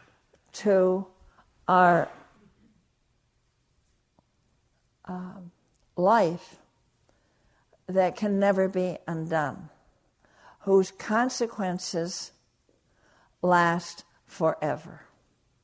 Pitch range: 165-195 Hz